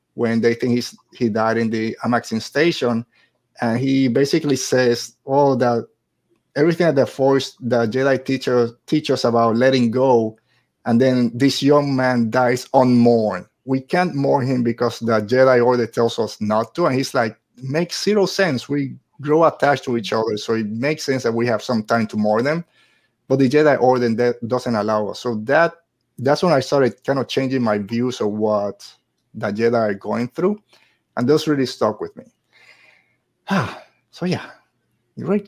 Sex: male